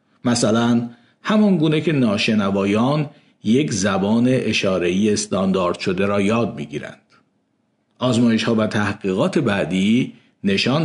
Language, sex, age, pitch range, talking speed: Persian, male, 50-69, 110-150 Hz, 110 wpm